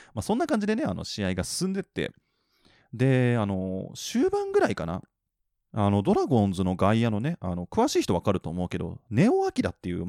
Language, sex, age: Japanese, male, 20-39